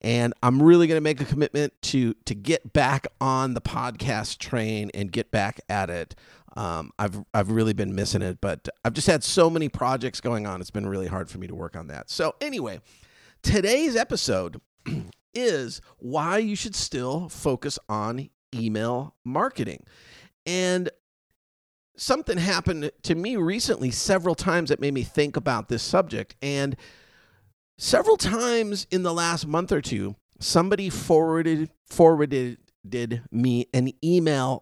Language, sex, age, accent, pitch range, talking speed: English, male, 40-59, American, 115-170 Hz, 160 wpm